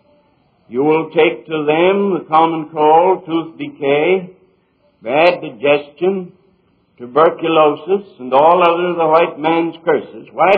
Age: 60-79